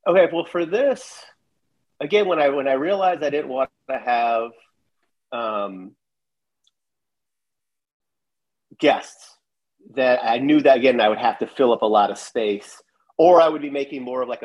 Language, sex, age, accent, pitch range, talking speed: English, male, 30-49, American, 105-135 Hz, 165 wpm